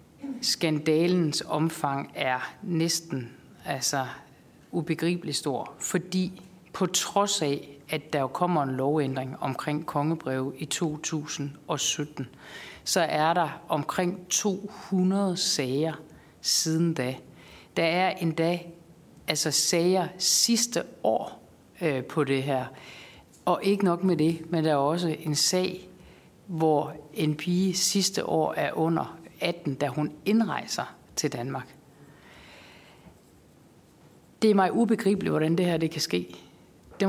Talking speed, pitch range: 120 wpm, 150-185 Hz